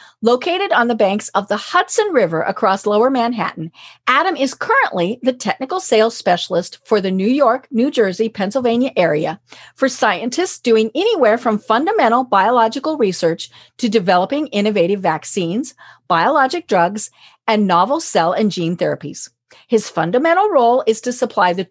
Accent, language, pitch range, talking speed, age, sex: American, English, 205-280 Hz, 145 wpm, 40-59, female